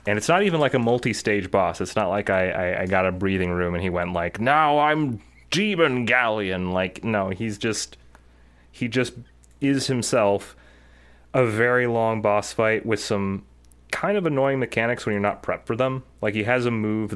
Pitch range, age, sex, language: 85-110 Hz, 30-49, male, English